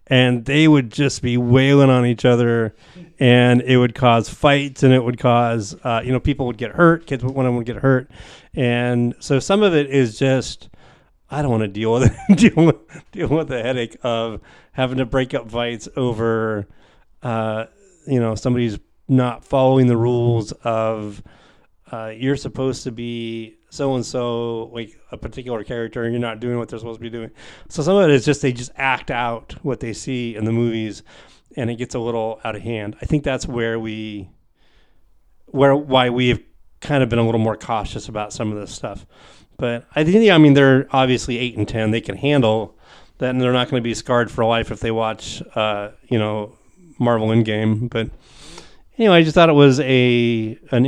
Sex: male